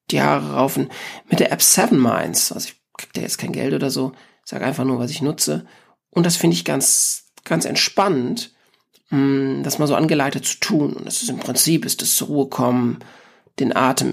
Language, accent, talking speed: German, German, 215 wpm